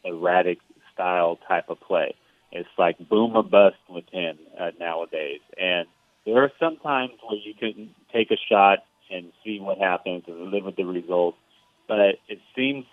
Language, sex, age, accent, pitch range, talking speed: English, male, 30-49, American, 95-125 Hz, 170 wpm